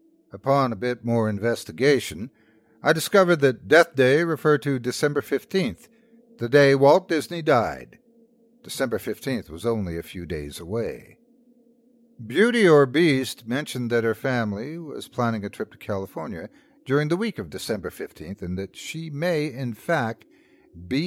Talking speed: 150 wpm